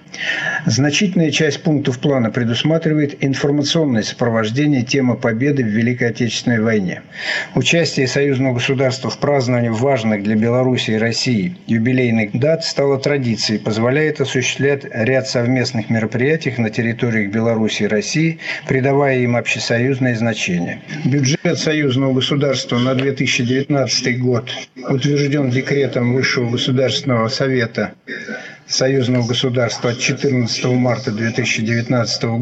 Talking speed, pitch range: 105 wpm, 115-145 Hz